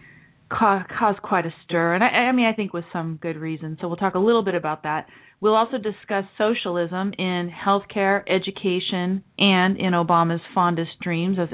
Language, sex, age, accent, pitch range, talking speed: English, female, 30-49, American, 165-200 Hz, 180 wpm